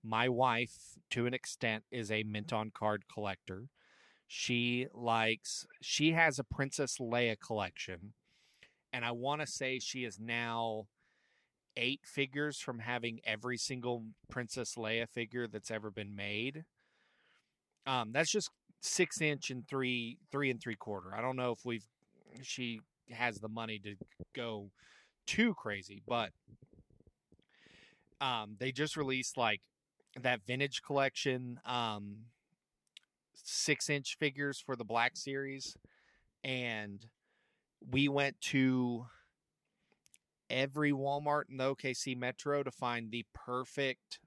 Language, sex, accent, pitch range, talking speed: English, male, American, 115-135 Hz, 125 wpm